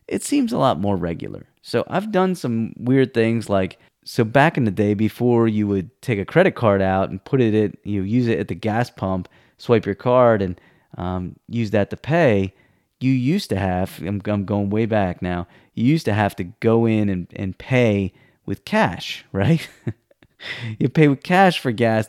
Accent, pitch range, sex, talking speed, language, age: American, 100-140 Hz, male, 205 wpm, English, 30-49